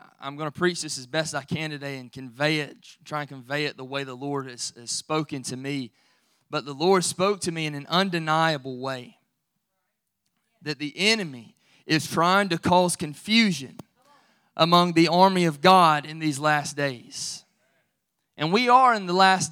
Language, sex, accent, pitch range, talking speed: English, male, American, 145-185 Hz, 180 wpm